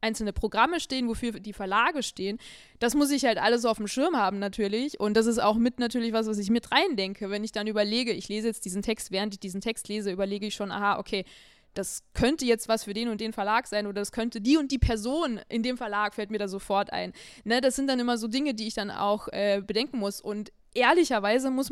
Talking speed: 245 wpm